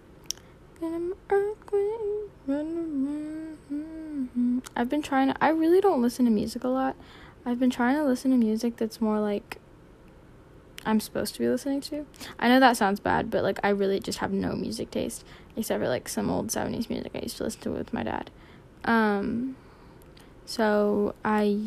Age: 10-29